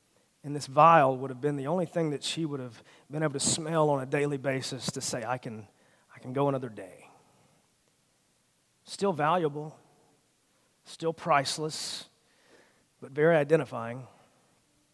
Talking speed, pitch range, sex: 150 wpm, 165-235 Hz, male